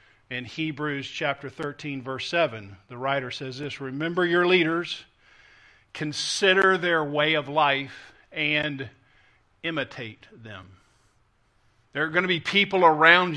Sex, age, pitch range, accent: male, 50-69, 140-180 Hz, American